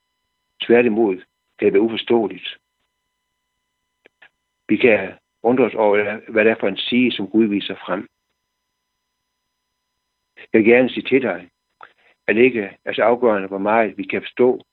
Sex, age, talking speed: male, 60-79, 145 wpm